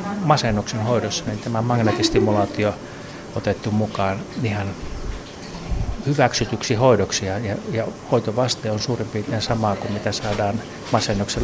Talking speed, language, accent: 110 wpm, Finnish, native